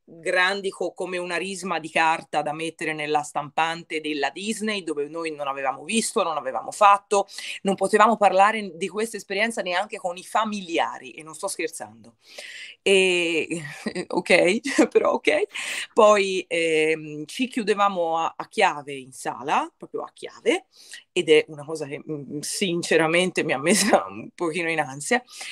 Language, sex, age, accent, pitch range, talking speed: Italian, female, 30-49, native, 155-220 Hz, 155 wpm